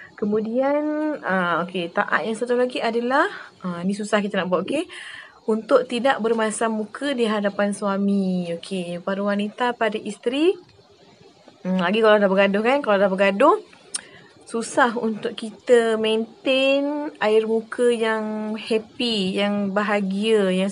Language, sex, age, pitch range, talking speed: Malay, female, 20-39, 200-240 Hz, 135 wpm